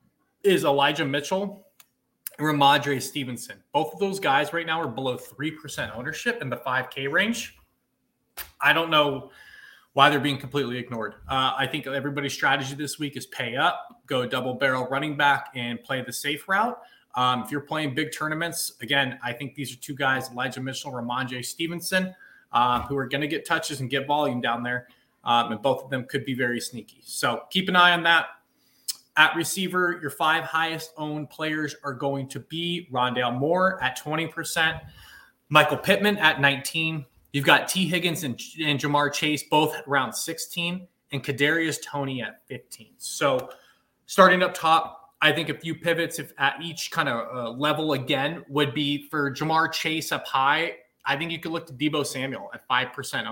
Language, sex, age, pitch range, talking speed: English, male, 20-39, 135-160 Hz, 180 wpm